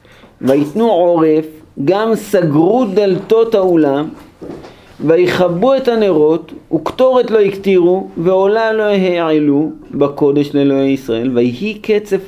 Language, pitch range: Hebrew, 125-195 Hz